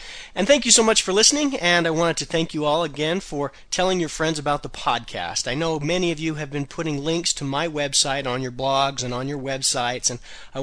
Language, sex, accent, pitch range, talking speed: Italian, male, American, 125-160 Hz, 245 wpm